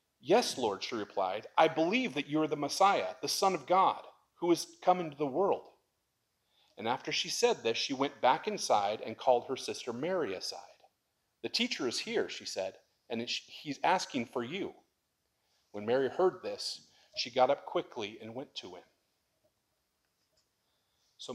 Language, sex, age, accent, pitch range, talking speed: English, male, 40-59, American, 140-180 Hz, 170 wpm